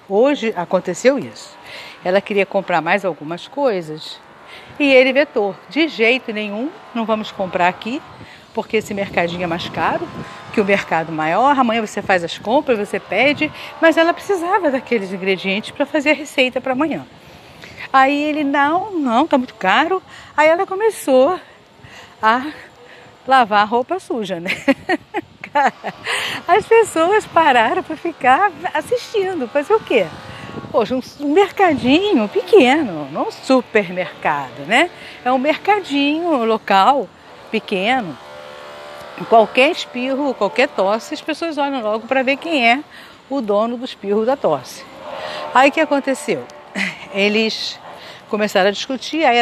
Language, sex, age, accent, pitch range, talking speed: Portuguese, female, 40-59, Brazilian, 205-300 Hz, 135 wpm